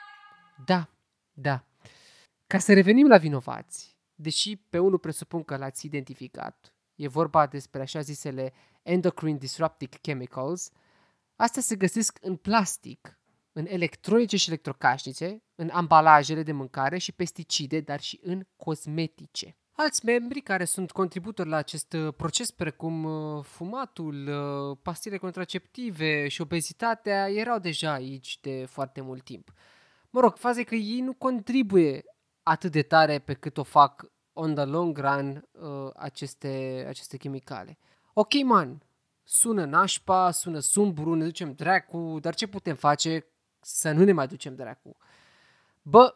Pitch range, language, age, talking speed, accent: 145-195 Hz, Romanian, 20-39, 135 wpm, native